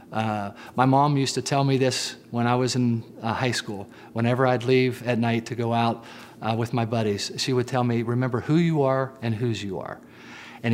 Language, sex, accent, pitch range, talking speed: English, male, American, 110-130 Hz, 225 wpm